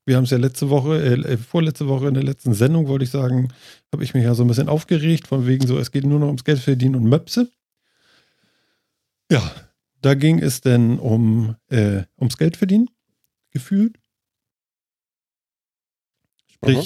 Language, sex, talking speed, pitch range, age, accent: German, male, 170 wpm, 120-150 Hz, 50-69, German